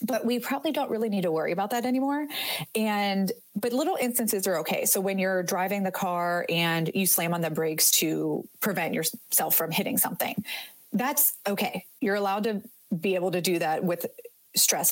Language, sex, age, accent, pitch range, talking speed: English, female, 30-49, American, 170-210 Hz, 190 wpm